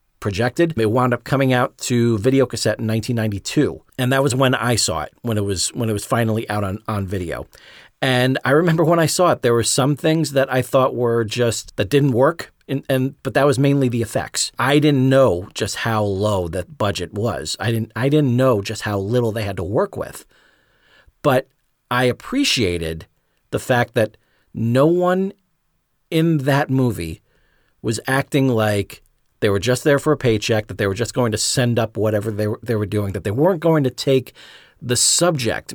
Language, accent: English, American